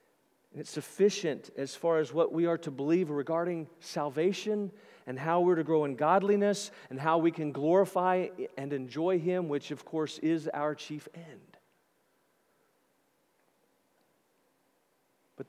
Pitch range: 155-200 Hz